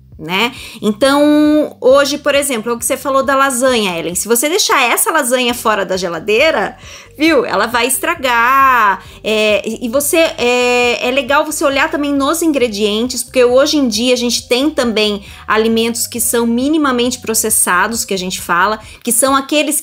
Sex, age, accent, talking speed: female, 20-39, Brazilian, 170 wpm